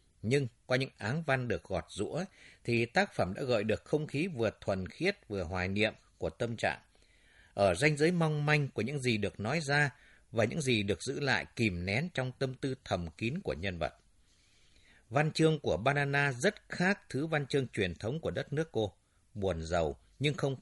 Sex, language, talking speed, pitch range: male, Vietnamese, 205 wpm, 100-145 Hz